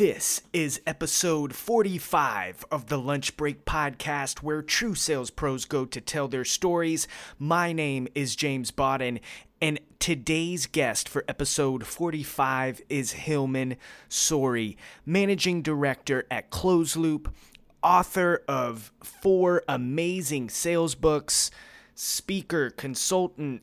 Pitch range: 135-165 Hz